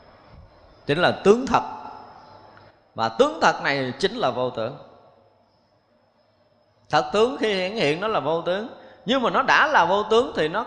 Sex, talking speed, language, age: male, 170 wpm, Vietnamese, 20-39